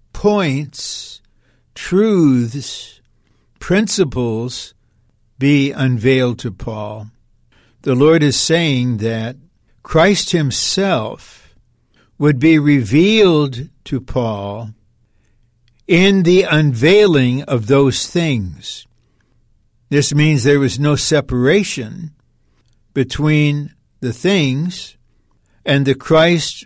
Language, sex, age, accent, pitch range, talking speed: English, male, 60-79, American, 115-150 Hz, 85 wpm